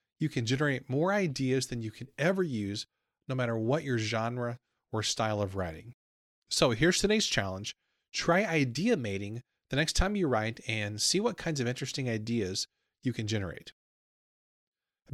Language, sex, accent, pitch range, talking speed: English, male, American, 120-170 Hz, 165 wpm